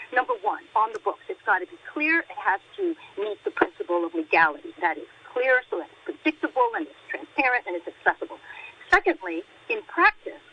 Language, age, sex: English, 50-69, female